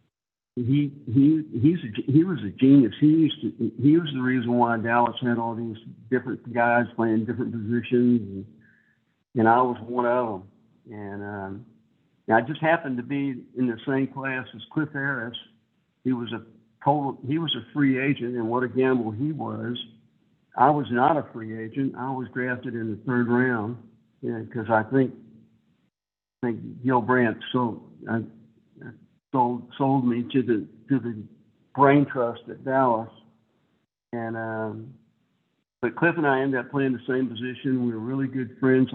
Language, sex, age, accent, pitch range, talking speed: English, male, 60-79, American, 115-135 Hz, 175 wpm